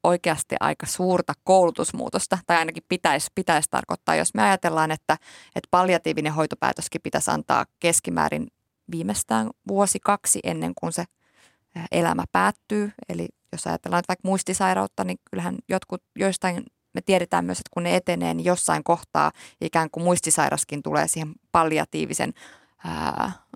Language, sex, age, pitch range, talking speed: Finnish, female, 20-39, 155-190 Hz, 135 wpm